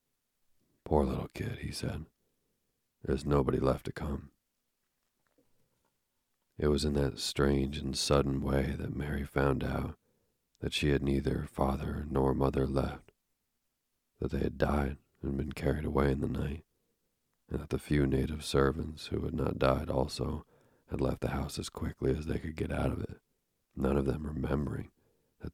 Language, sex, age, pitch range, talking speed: English, male, 40-59, 65-75 Hz, 165 wpm